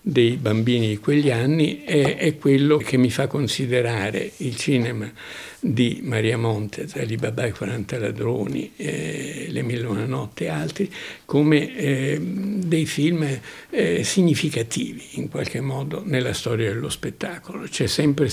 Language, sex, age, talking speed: Italian, male, 60-79, 145 wpm